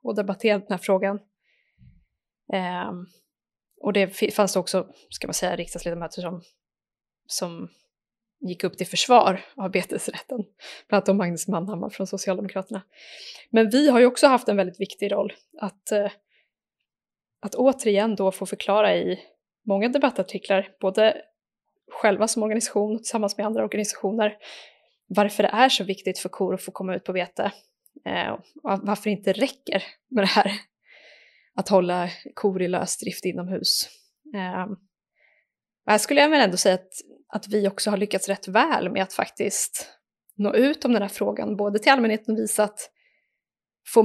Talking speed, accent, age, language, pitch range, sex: 165 wpm, native, 20-39, Swedish, 195-220 Hz, female